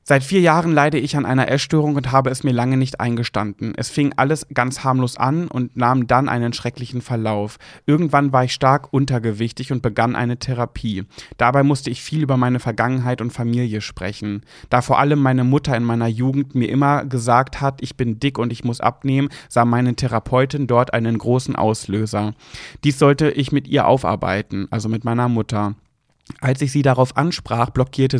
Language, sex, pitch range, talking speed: German, male, 115-140 Hz, 185 wpm